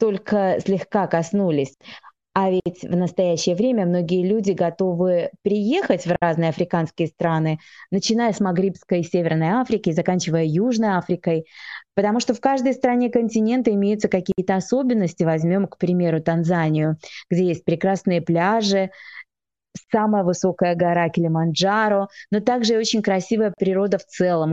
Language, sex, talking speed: Russian, female, 130 wpm